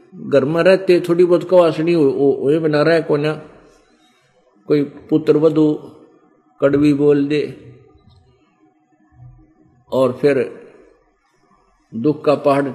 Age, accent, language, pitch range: 50-69, native, Hindi, 140-170 Hz